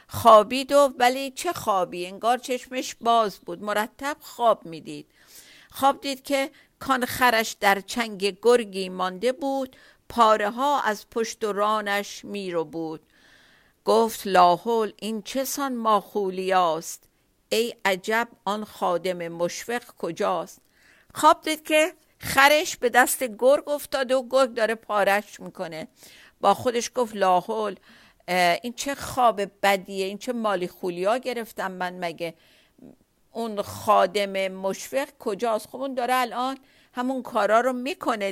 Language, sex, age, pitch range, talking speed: Persian, female, 50-69, 200-260 Hz, 125 wpm